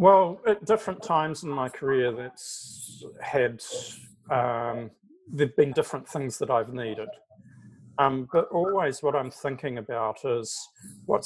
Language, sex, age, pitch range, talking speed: English, male, 40-59, 125-195 Hz, 140 wpm